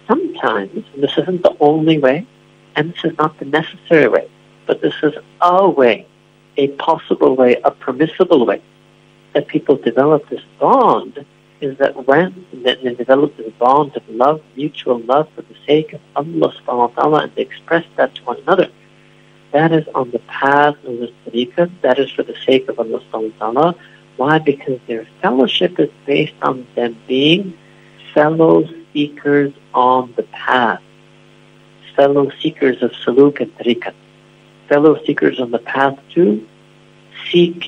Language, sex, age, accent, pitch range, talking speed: English, male, 60-79, American, 130-155 Hz, 160 wpm